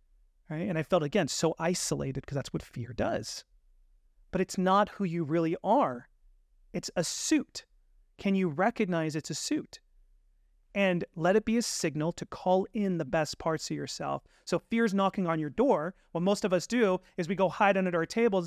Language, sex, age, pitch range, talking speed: English, male, 30-49, 140-185 Hz, 195 wpm